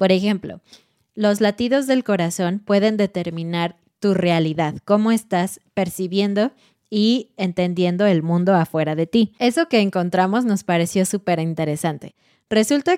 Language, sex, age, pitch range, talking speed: Spanish, female, 20-39, 180-225 Hz, 130 wpm